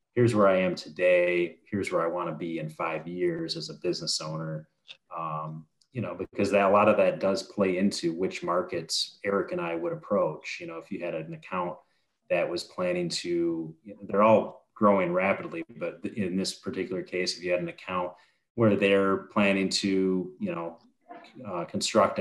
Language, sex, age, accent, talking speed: English, male, 30-49, American, 190 wpm